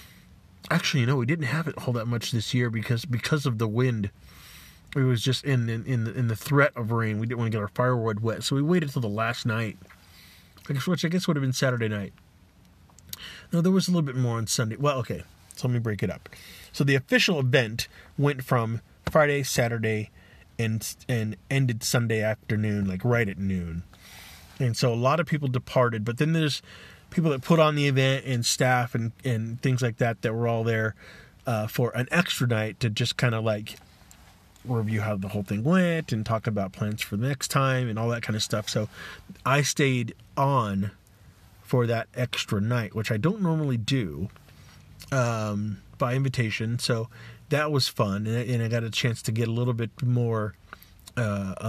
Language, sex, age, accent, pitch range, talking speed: English, male, 30-49, American, 105-130 Hz, 205 wpm